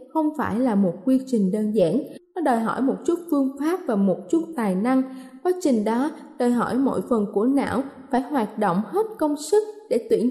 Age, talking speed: 10-29, 215 wpm